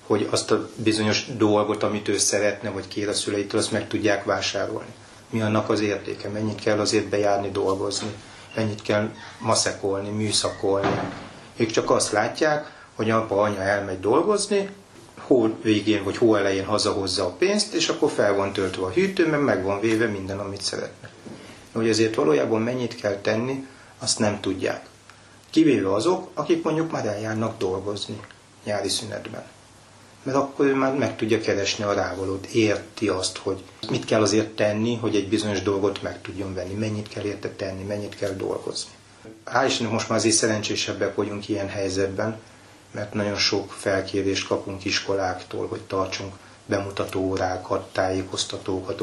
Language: Hungarian